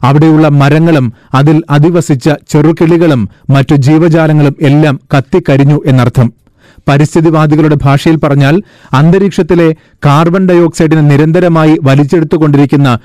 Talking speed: 85 wpm